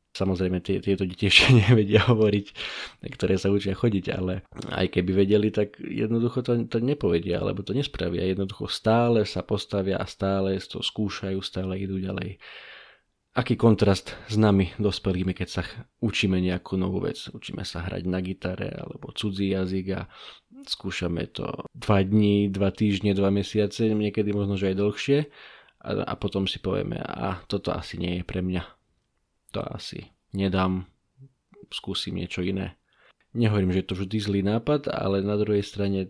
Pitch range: 95-110 Hz